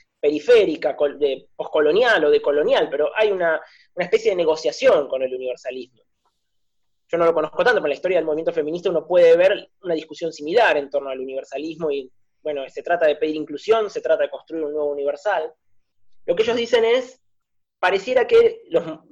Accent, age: Argentinian, 20-39